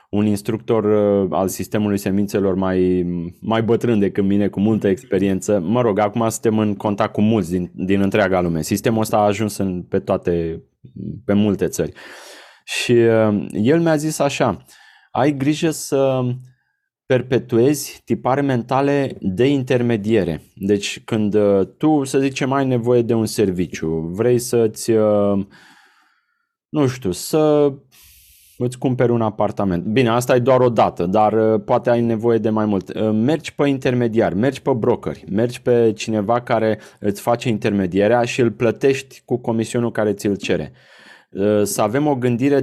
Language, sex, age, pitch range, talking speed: Romanian, male, 20-39, 100-125 Hz, 150 wpm